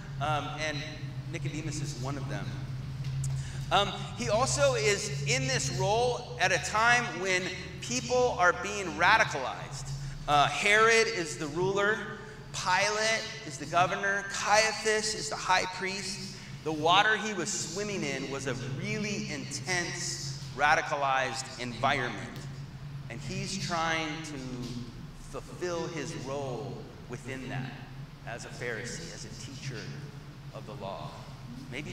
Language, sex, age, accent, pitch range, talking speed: English, male, 30-49, American, 135-155 Hz, 125 wpm